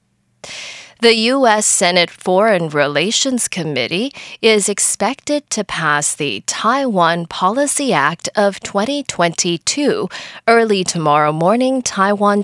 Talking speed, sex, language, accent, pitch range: 95 wpm, female, English, American, 170-250 Hz